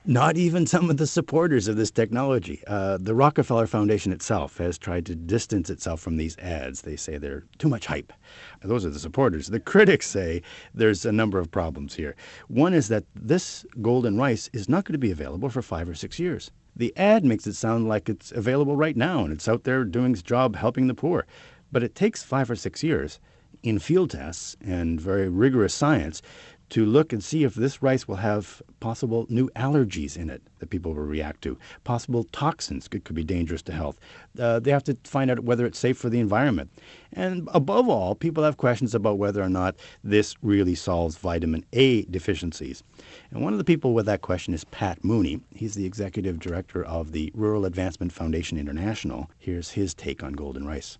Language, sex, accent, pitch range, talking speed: English, male, American, 85-130 Hz, 205 wpm